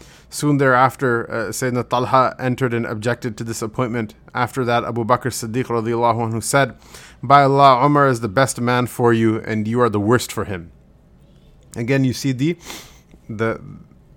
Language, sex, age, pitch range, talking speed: English, male, 30-49, 120-140 Hz, 160 wpm